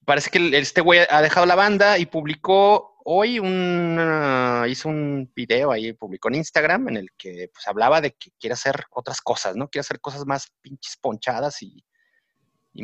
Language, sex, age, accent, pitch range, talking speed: Spanish, male, 30-49, Mexican, 120-170 Hz, 180 wpm